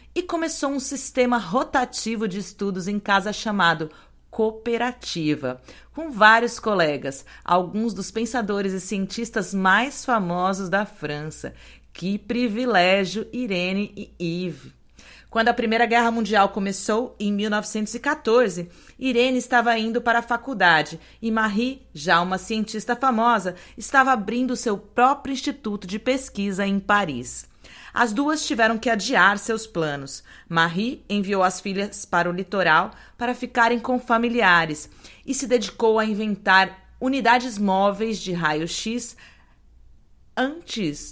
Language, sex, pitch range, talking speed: Portuguese, female, 185-235 Hz, 125 wpm